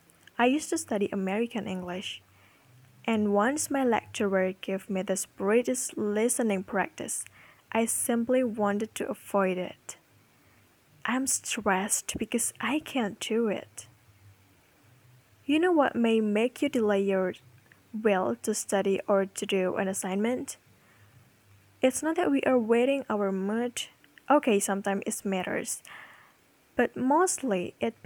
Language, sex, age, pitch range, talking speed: Indonesian, female, 10-29, 195-250 Hz, 130 wpm